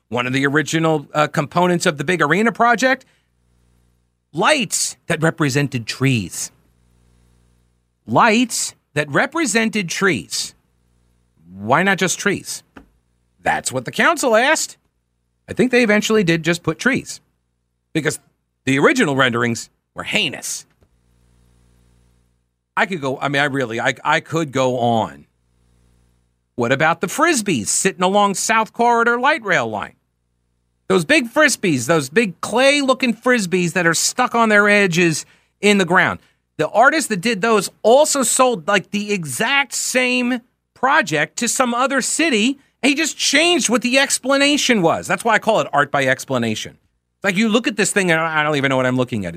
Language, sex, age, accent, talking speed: English, male, 50-69, American, 155 wpm